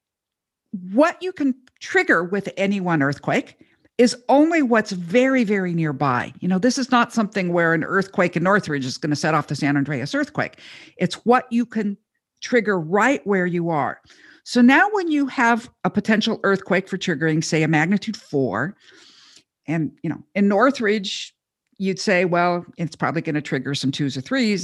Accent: American